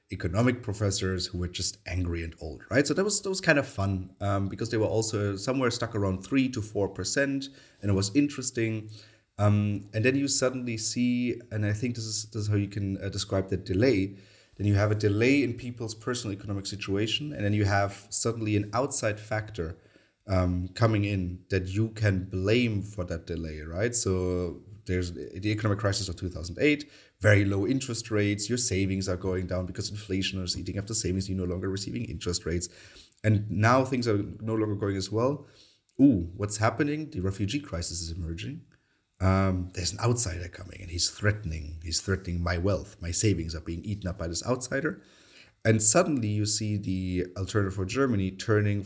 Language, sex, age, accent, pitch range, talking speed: English, male, 30-49, German, 95-115 Hz, 195 wpm